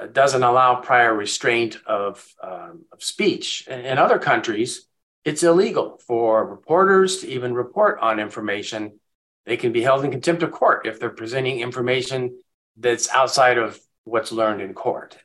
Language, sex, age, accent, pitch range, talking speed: English, male, 50-69, American, 120-155 Hz, 155 wpm